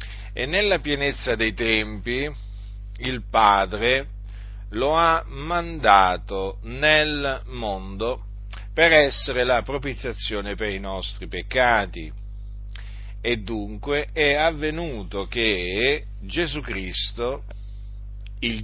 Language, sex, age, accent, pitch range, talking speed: Italian, male, 40-59, native, 100-140 Hz, 90 wpm